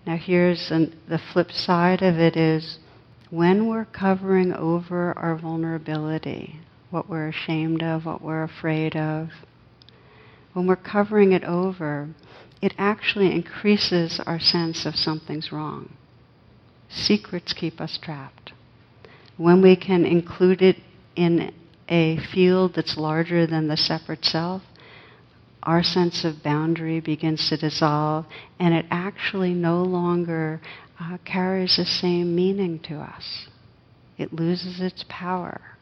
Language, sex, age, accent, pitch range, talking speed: English, female, 60-79, American, 155-175 Hz, 125 wpm